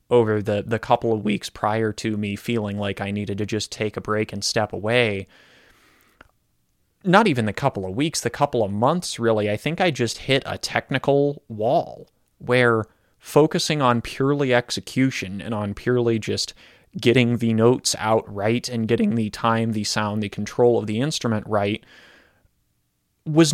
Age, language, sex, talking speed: 20-39, English, male, 170 wpm